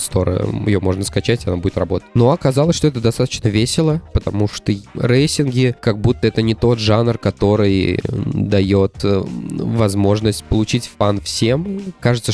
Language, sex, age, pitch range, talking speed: Russian, male, 20-39, 95-120 Hz, 140 wpm